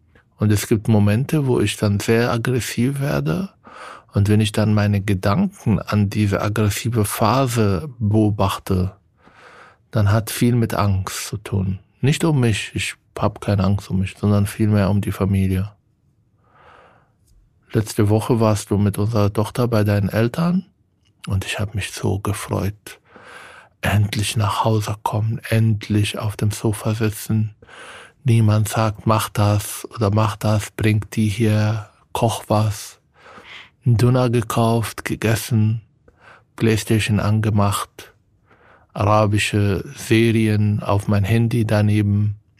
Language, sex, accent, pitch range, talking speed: German, male, German, 100-115 Hz, 130 wpm